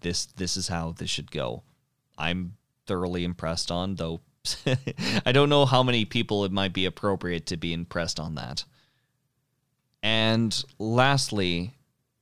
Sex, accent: male, American